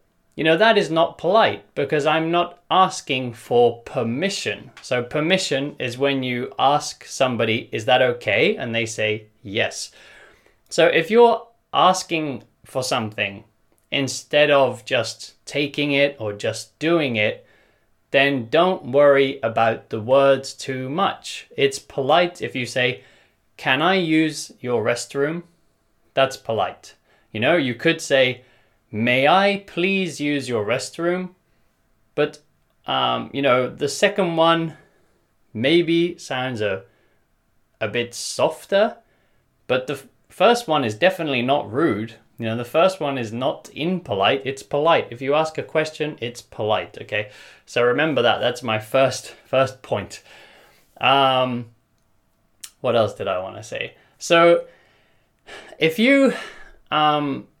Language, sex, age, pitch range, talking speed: English, male, 20-39, 120-165 Hz, 140 wpm